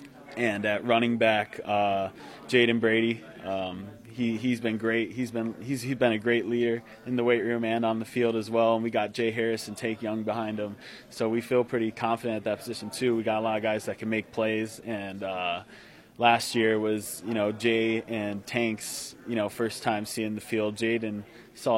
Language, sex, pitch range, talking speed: English, male, 105-120 Hz, 215 wpm